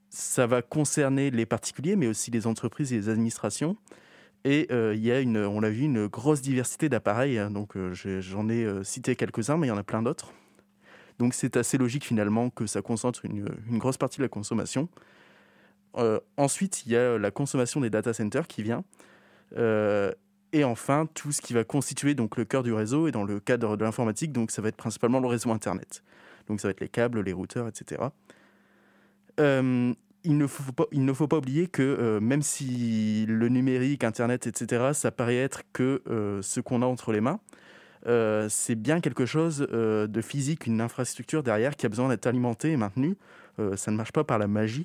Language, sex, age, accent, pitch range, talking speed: French, male, 20-39, French, 110-140 Hz, 210 wpm